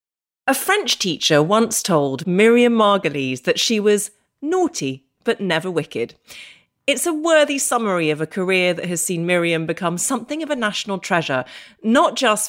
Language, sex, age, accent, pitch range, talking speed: English, female, 30-49, British, 155-230 Hz, 160 wpm